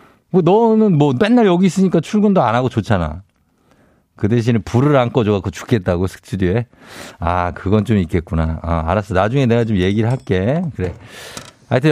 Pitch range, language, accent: 110-170 Hz, Korean, native